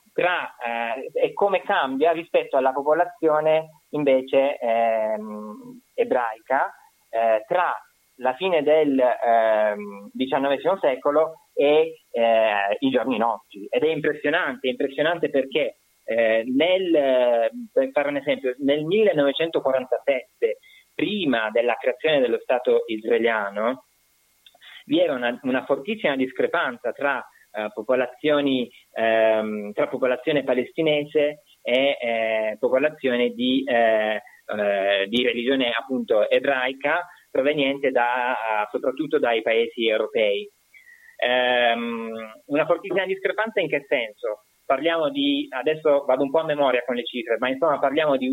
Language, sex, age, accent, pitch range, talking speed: Italian, male, 20-39, native, 115-190 Hz, 115 wpm